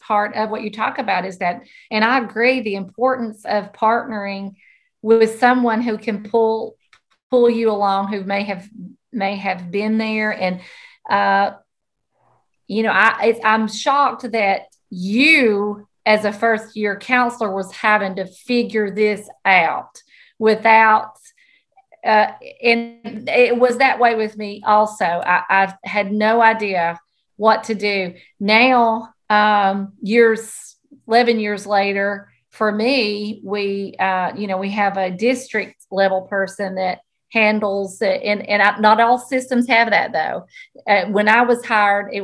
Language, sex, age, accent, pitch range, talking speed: English, female, 40-59, American, 200-235 Hz, 150 wpm